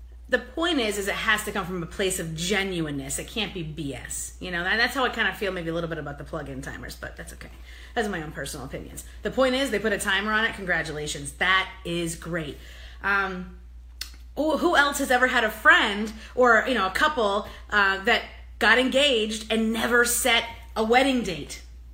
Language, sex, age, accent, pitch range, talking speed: English, female, 30-49, American, 175-280 Hz, 215 wpm